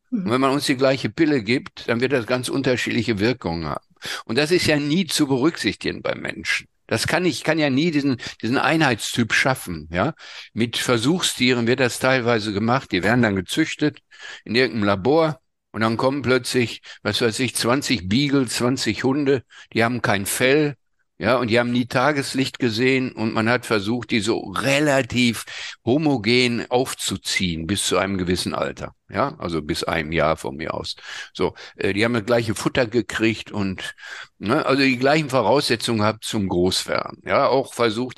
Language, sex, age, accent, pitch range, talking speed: German, male, 50-69, German, 105-130 Hz, 175 wpm